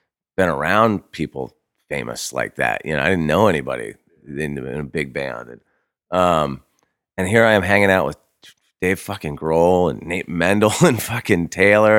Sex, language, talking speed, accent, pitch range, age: male, English, 165 wpm, American, 85-115 Hz, 30-49